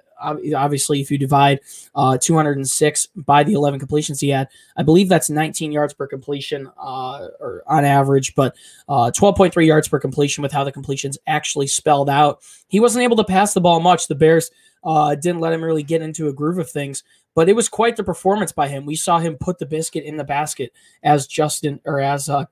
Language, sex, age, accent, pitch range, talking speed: English, male, 20-39, American, 140-165 Hz, 210 wpm